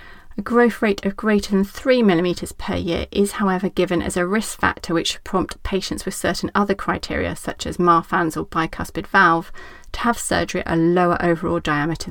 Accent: British